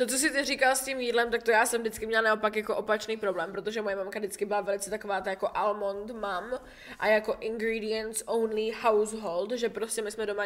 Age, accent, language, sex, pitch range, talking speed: 10-29, Czech, English, female, 215-260 Hz, 210 wpm